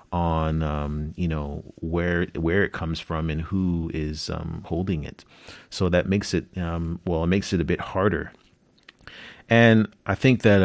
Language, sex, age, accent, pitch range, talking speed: English, male, 30-49, American, 80-95 Hz, 175 wpm